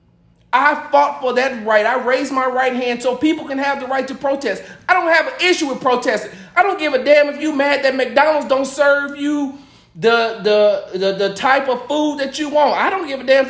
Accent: American